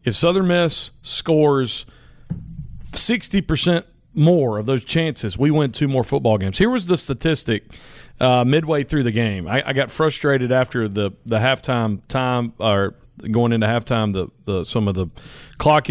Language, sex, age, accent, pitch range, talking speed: English, male, 40-59, American, 120-165 Hz, 165 wpm